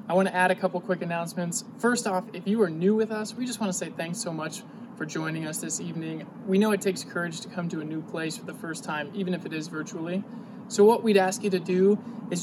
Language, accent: English, American